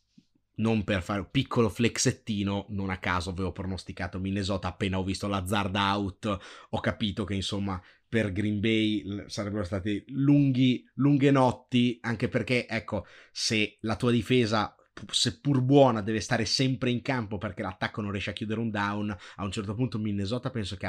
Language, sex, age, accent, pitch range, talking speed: Italian, male, 30-49, native, 100-120 Hz, 165 wpm